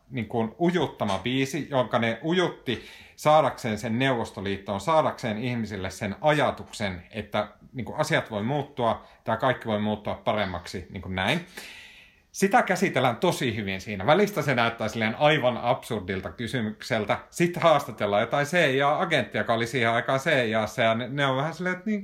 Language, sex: Finnish, male